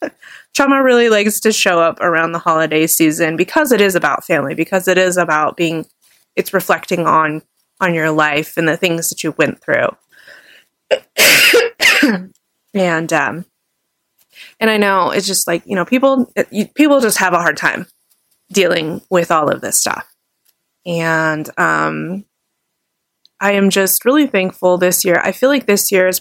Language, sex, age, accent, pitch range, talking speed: English, female, 20-39, American, 175-220 Hz, 165 wpm